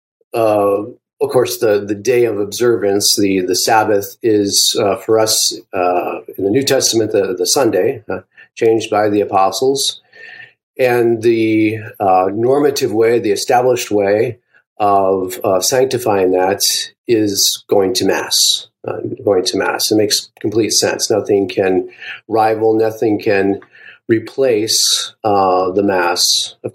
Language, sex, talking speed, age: English, male, 140 wpm, 40-59